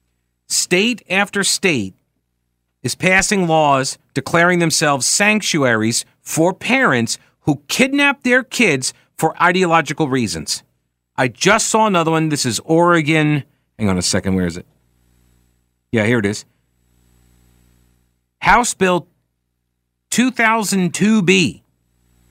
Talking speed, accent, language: 110 wpm, American, English